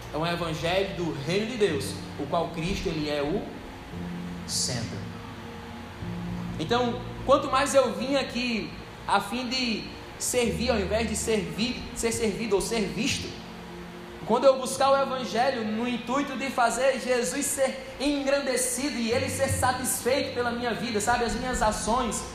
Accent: Brazilian